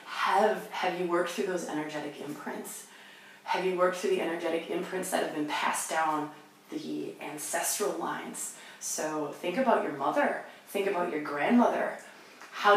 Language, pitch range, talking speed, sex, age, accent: English, 155-225 Hz, 155 wpm, female, 20-39, American